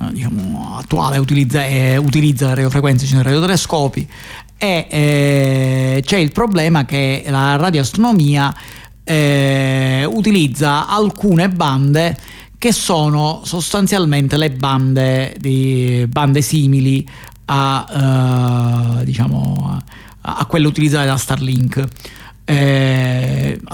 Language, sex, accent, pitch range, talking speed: Italian, male, native, 130-150 Hz, 100 wpm